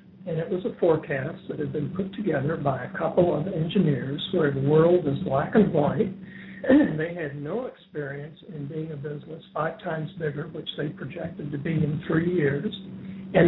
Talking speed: 190 wpm